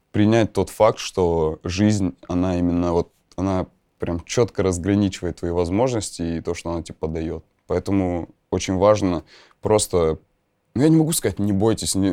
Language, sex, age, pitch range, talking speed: Russian, male, 20-39, 90-110 Hz, 160 wpm